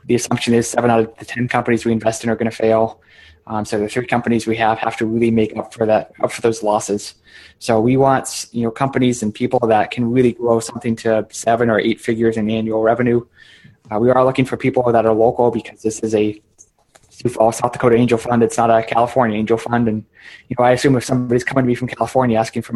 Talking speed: 245 wpm